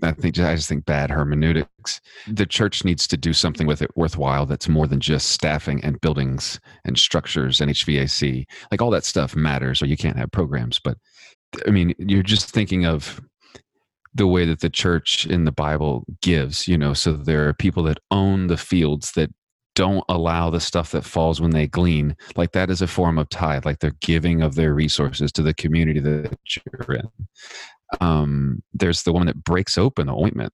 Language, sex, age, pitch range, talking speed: English, male, 30-49, 75-95 Hz, 195 wpm